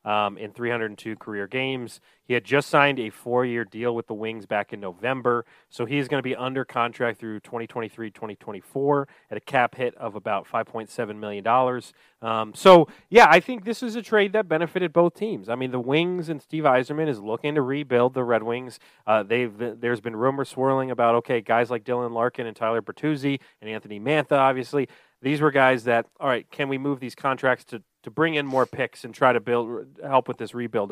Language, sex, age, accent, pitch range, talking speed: English, male, 30-49, American, 120-150 Hz, 210 wpm